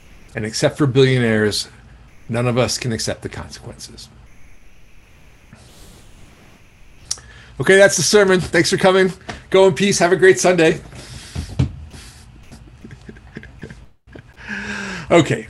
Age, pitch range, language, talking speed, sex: 50-69, 115-160 Hz, English, 100 wpm, male